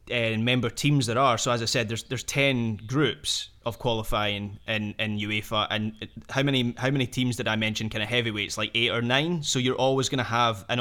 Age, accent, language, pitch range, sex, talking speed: 20-39, British, English, 110-130 Hz, male, 235 wpm